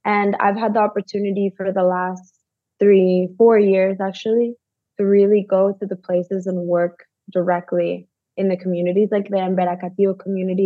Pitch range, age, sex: 180-205 Hz, 20-39, female